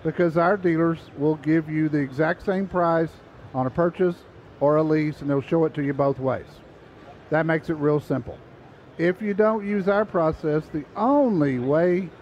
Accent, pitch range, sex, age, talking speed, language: American, 155-205 Hz, male, 50-69, 185 wpm, English